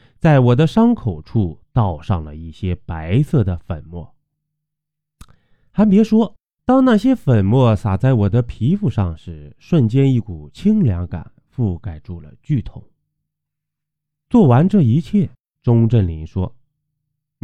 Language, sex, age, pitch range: Chinese, male, 20-39, 90-150 Hz